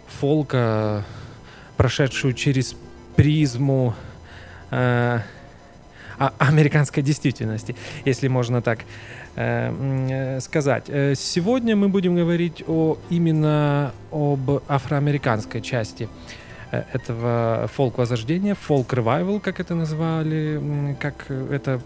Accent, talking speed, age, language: native, 80 wpm, 20-39, Russian